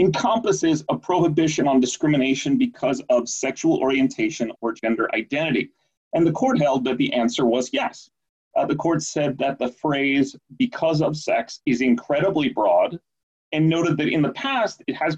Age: 30-49